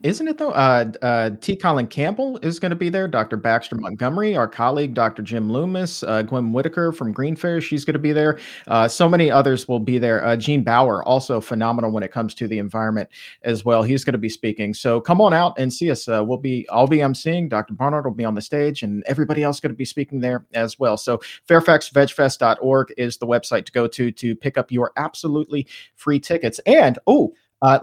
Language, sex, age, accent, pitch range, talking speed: English, male, 40-59, American, 120-165 Hz, 225 wpm